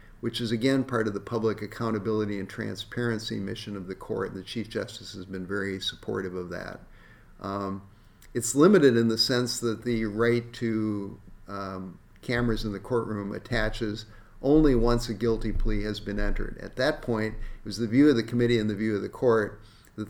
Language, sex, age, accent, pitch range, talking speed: English, male, 50-69, American, 105-120 Hz, 190 wpm